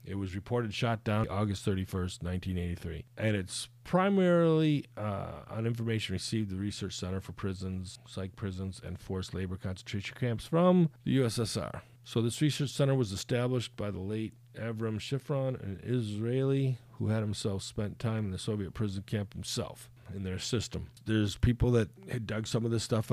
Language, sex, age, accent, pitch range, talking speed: English, male, 40-59, American, 100-120 Hz, 170 wpm